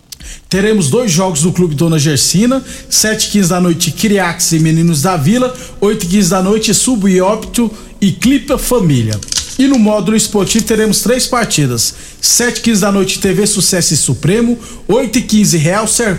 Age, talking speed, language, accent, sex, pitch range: 50-69, 155 wpm, Portuguese, Brazilian, male, 170-215 Hz